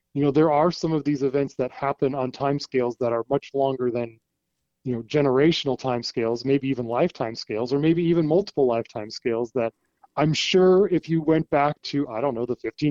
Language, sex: English, male